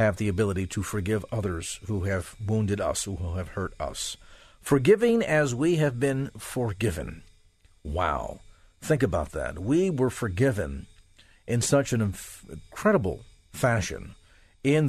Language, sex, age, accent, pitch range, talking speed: English, male, 50-69, American, 95-135 Hz, 135 wpm